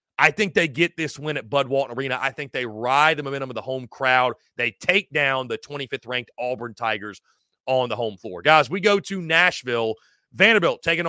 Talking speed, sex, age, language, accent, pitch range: 205 wpm, male, 30-49, English, American, 125-175 Hz